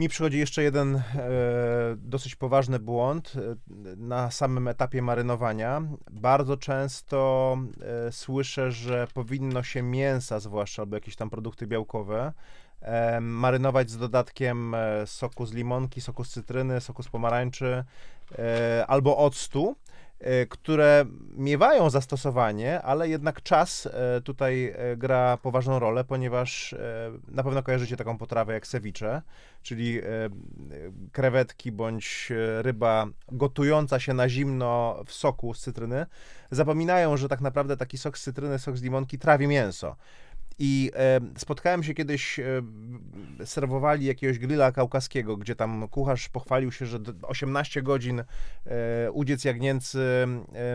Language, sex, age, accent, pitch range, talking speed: Polish, male, 20-39, native, 120-135 Hz, 120 wpm